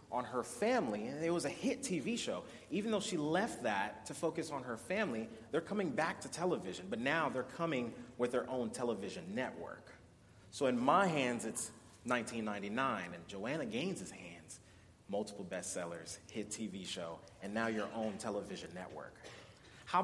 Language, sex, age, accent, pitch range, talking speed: English, male, 30-49, American, 110-145 Hz, 170 wpm